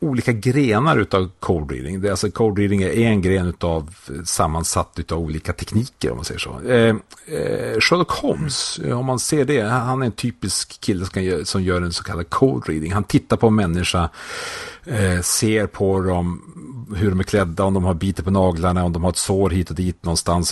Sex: male